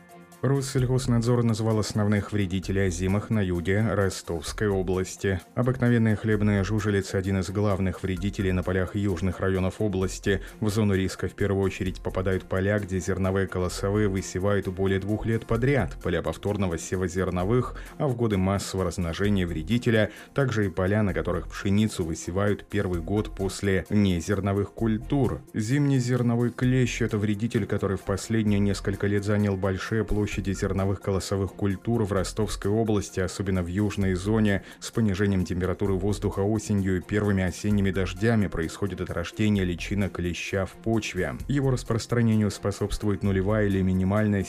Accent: native